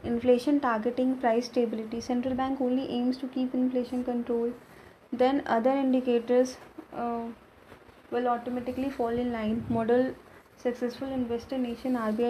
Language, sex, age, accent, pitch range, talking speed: Hindi, female, 20-39, native, 230-255 Hz, 120 wpm